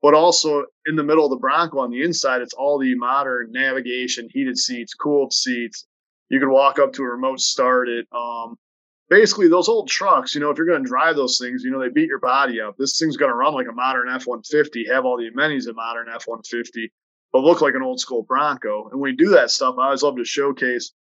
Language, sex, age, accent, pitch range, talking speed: English, male, 30-49, American, 125-145 Hz, 240 wpm